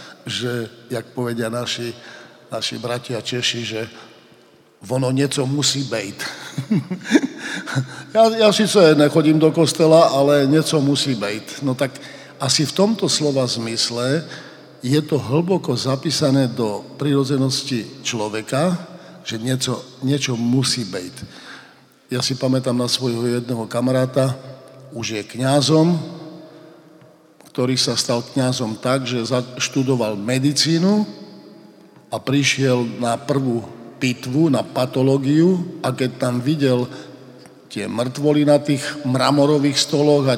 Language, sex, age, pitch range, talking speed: Slovak, male, 50-69, 120-145 Hz, 115 wpm